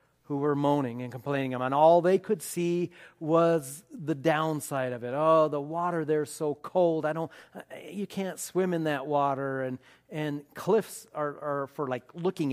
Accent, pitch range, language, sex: American, 140-170 Hz, English, male